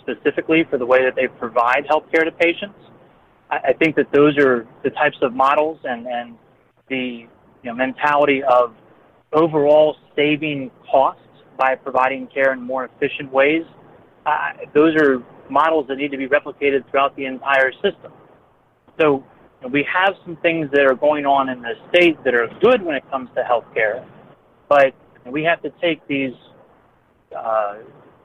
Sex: male